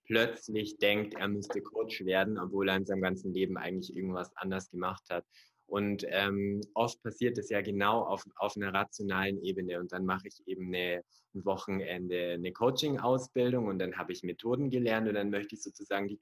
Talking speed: 190 wpm